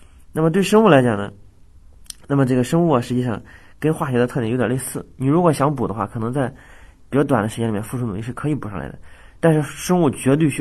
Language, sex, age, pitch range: Chinese, male, 30-49, 110-150 Hz